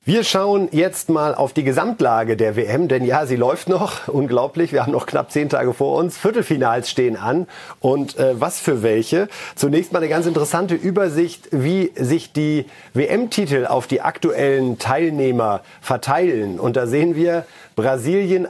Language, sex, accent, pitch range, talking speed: German, male, German, 125-165 Hz, 165 wpm